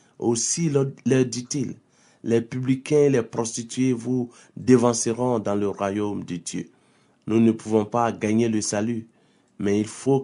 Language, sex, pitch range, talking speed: French, male, 110-125 Hz, 145 wpm